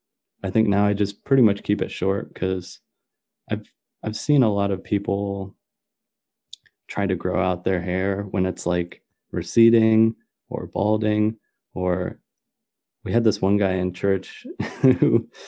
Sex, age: male, 30-49